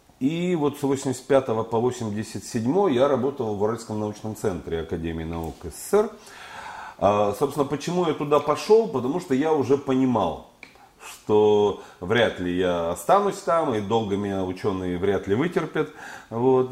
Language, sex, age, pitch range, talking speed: Russian, male, 40-59, 90-140 Hz, 145 wpm